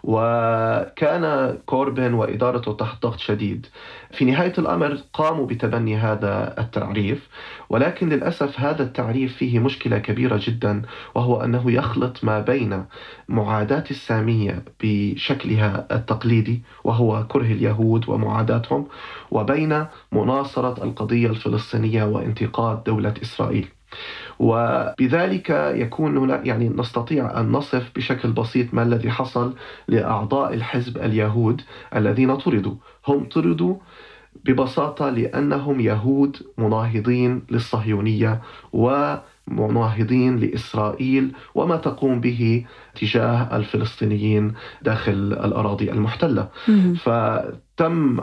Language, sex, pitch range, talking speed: Arabic, male, 110-130 Hz, 95 wpm